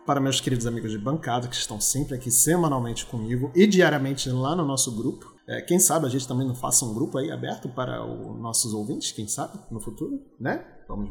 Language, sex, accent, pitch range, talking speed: Portuguese, male, Brazilian, 135-185 Hz, 215 wpm